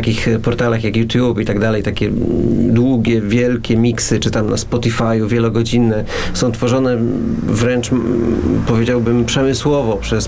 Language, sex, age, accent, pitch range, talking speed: Polish, male, 40-59, native, 110-125 Hz, 130 wpm